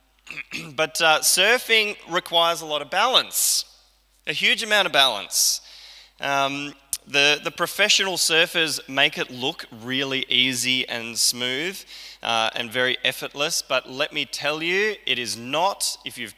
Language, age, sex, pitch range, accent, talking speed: English, 20-39, male, 130-170 Hz, Australian, 145 wpm